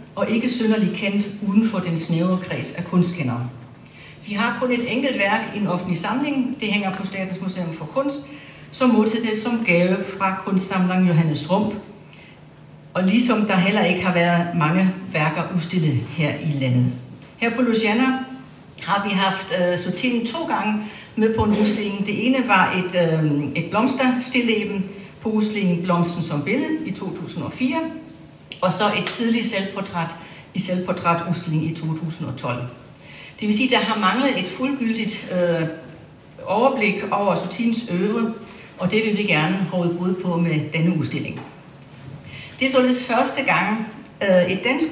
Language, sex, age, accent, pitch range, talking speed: Danish, female, 60-79, native, 170-225 Hz, 160 wpm